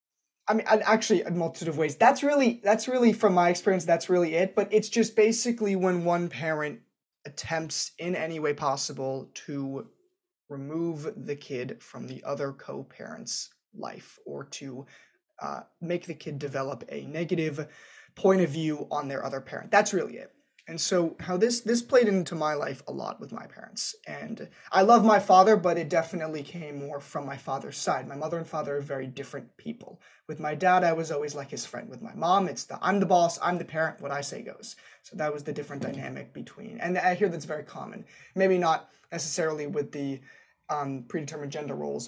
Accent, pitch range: American, 150-190 Hz